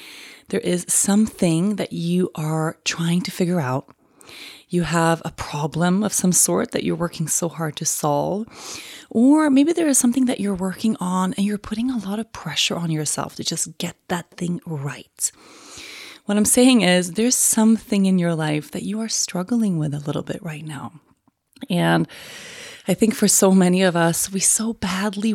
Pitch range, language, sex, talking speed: 165-205 Hz, English, female, 185 wpm